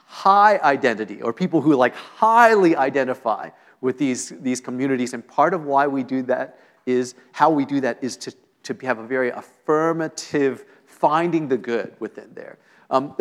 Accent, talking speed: American, 170 wpm